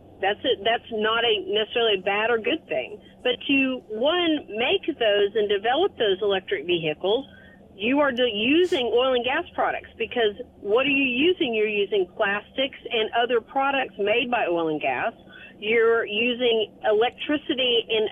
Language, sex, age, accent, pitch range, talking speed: English, female, 40-59, American, 215-290 Hz, 160 wpm